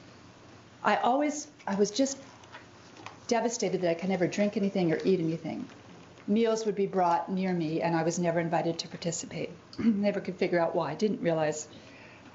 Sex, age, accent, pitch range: female, 40-59, American, 170-220 Hz